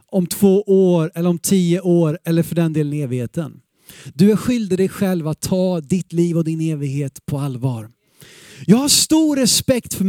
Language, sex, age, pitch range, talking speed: Swedish, male, 30-49, 170-245 Hz, 190 wpm